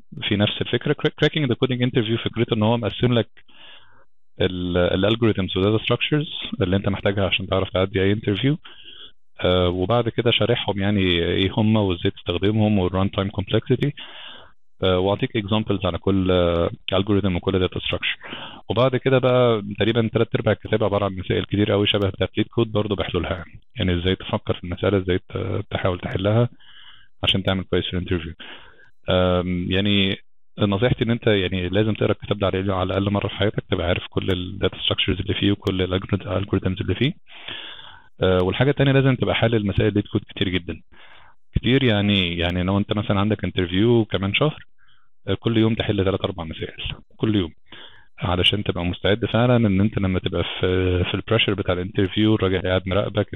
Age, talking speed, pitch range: 30-49, 160 wpm, 95-110 Hz